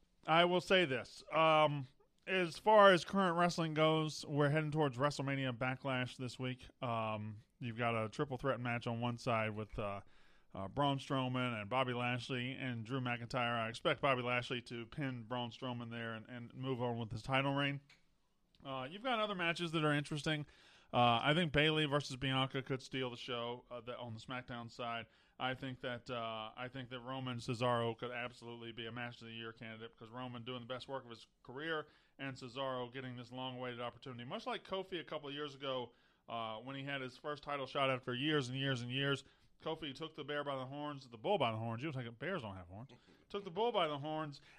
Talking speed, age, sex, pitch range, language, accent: 215 wpm, 20-39, male, 120-145 Hz, English, American